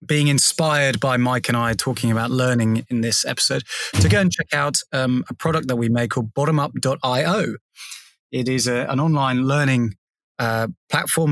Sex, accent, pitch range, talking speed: male, British, 120-145 Hz, 175 wpm